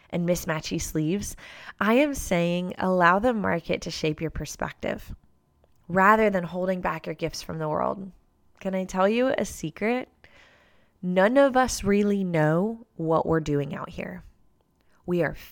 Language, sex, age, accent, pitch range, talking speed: English, female, 20-39, American, 160-200 Hz, 155 wpm